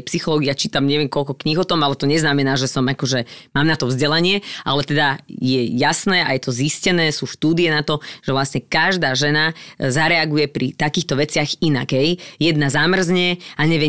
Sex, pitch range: female, 150-185 Hz